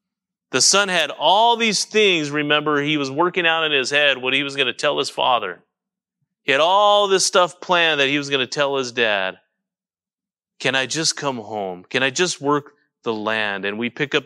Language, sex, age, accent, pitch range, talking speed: English, male, 30-49, American, 135-185 Hz, 215 wpm